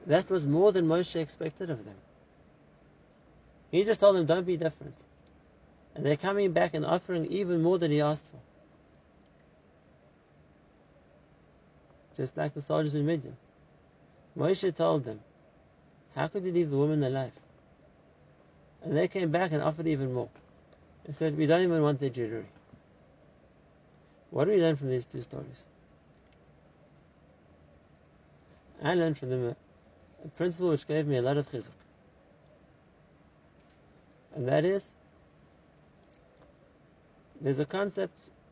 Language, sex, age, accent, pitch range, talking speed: English, male, 50-69, Turkish, 135-170 Hz, 135 wpm